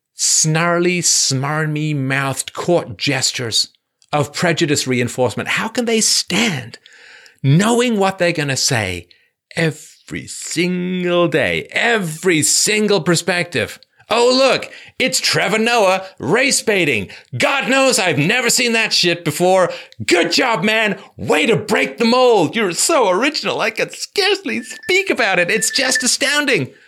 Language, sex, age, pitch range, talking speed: English, male, 40-59, 155-240 Hz, 125 wpm